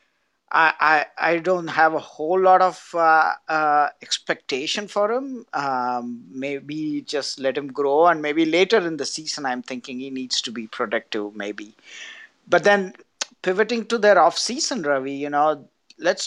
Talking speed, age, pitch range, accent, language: 160 wpm, 50-69, 135-185 Hz, Indian, English